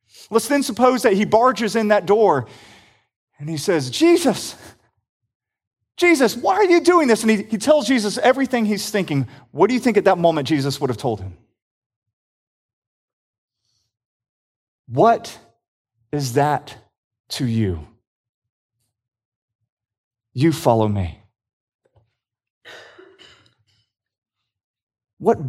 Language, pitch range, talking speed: English, 110-145 Hz, 115 wpm